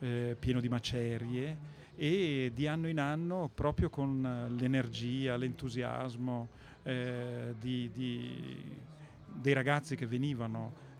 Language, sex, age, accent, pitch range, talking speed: Italian, male, 40-59, native, 125-150 Hz, 95 wpm